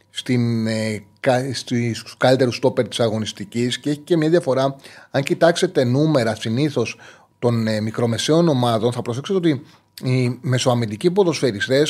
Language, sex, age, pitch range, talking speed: Greek, male, 30-49, 120-160 Hz, 115 wpm